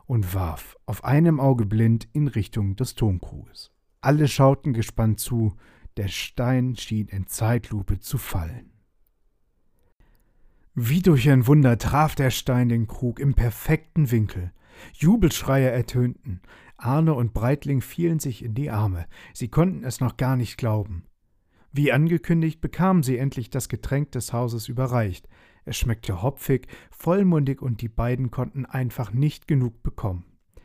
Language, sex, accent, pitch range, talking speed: German, male, German, 110-140 Hz, 140 wpm